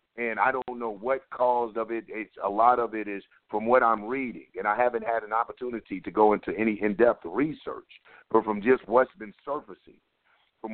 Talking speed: 205 wpm